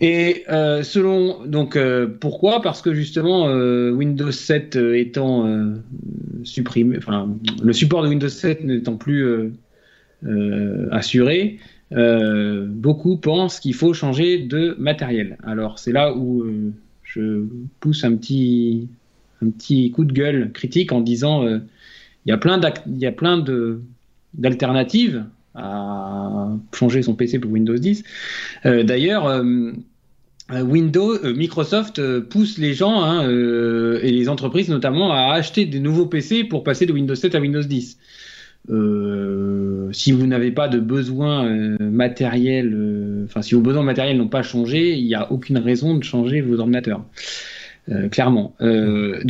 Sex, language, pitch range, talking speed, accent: male, French, 115-155 Hz, 155 wpm, French